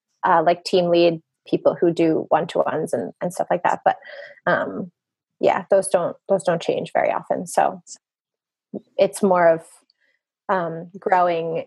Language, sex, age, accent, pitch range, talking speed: English, female, 20-39, American, 175-205 Hz, 155 wpm